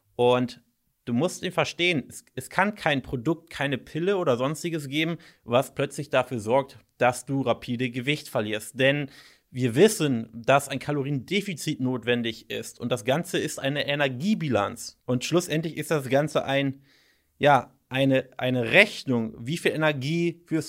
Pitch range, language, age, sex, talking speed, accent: 125-160 Hz, German, 30-49, male, 150 wpm, German